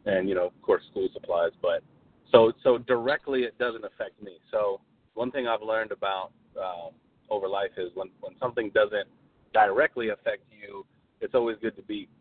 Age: 30-49